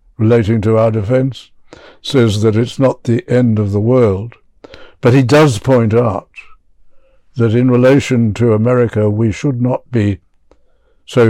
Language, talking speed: English, 150 wpm